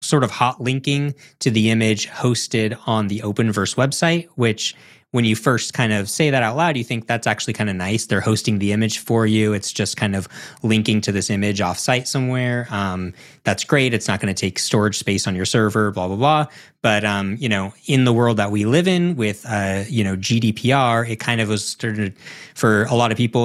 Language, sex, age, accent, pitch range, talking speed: English, male, 20-39, American, 100-120 Hz, 225 wpm